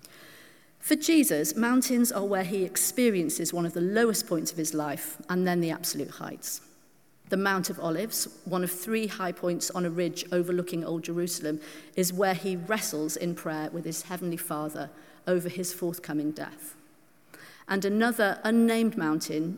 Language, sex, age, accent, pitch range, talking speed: English, female, 40-59, British, 165-205 Hz, 160 wpm